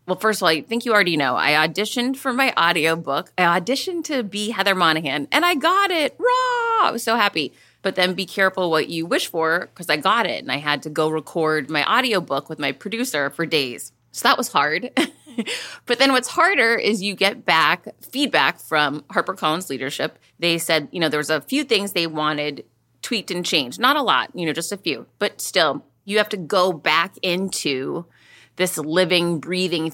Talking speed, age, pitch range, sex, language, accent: 205 wpm, 30-49, 155-225 Hz, female, English, American